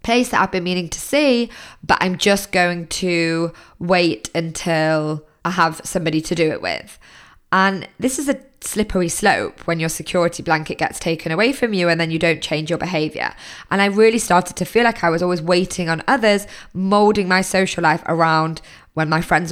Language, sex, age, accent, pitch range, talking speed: English, female, 20-39, British, 165-195 Hz, 195 wpm